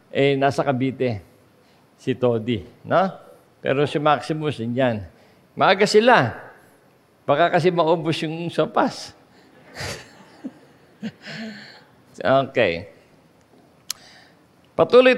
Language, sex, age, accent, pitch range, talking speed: English, male, 50-69, Filipino, 130-180 Hz, 75 wpm